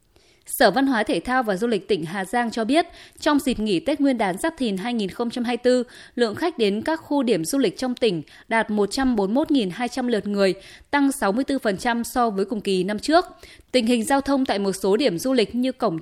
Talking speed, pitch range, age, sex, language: 210 wpm, 205-270 Hz, 20-39, female, Vietnamese